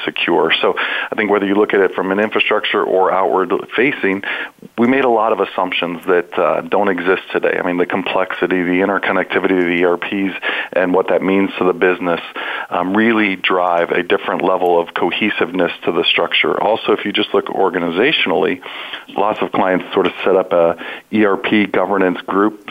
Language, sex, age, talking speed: English, male, 40-59, 185 wpm